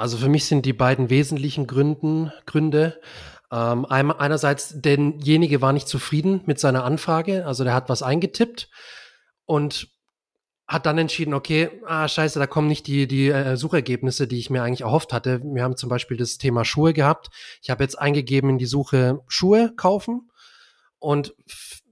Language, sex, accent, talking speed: German, male, German, 170 wpm